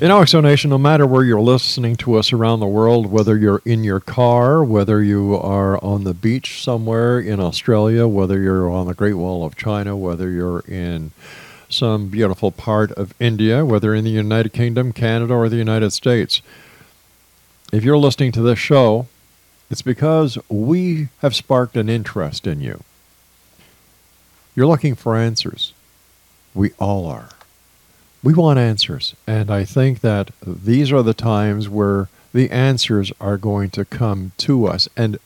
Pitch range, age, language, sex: 100-130 Hz, 50-69, English, male